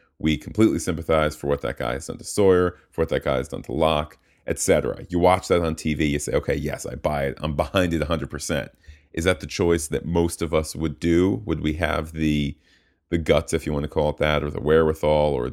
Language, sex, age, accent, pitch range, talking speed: English, male, 30-49, American, 75-85 Hz, 245 wpm